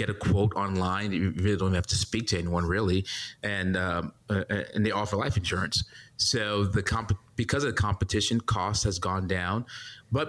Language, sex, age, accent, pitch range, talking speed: English, male, 30-49, American, 95-110 Hz, 190 wpm